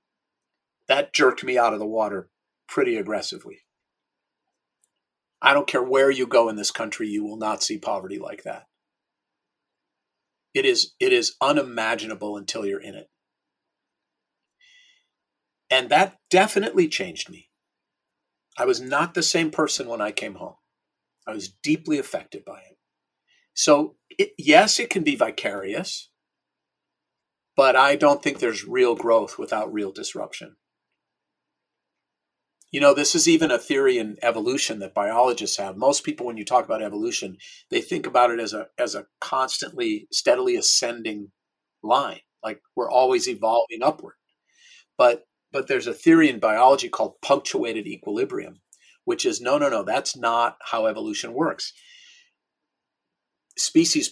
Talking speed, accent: 140 wpm, American